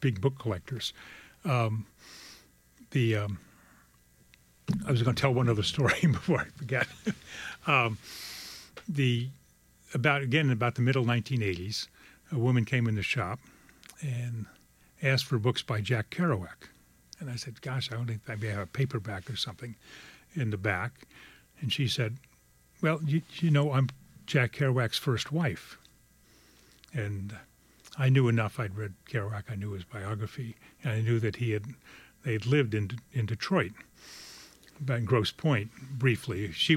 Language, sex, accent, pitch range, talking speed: English, male, American, 105-135 Hz, 150 wpm